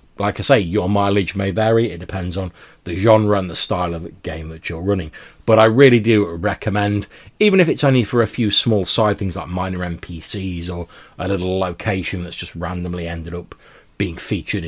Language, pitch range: English, 85-110 Hz